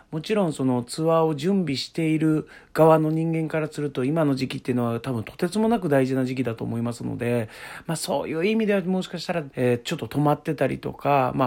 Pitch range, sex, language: 110-140 Hz, male, Japanese